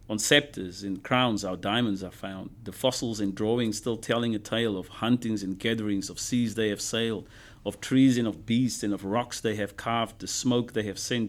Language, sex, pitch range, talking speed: English, male, 105-115 Hz, 220 wpm